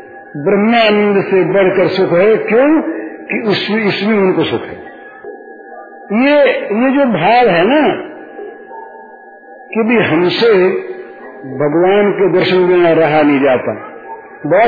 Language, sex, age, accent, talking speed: Hindi, male, 50-69, native, 120 wpm